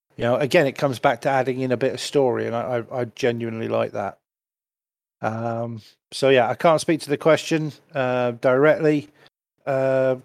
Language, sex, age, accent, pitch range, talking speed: English, male, 50-69, British, 130-150 Hz, 180 wpm